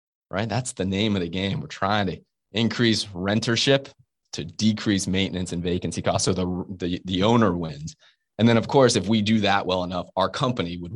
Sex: male